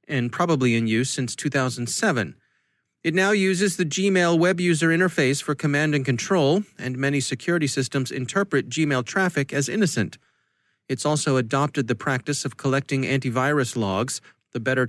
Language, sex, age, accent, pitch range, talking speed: English, male, 30-49, American, 130-160 Hz, 155 wpm